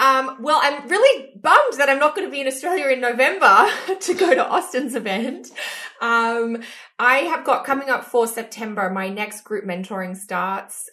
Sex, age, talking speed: female, 20-39, 180 wpm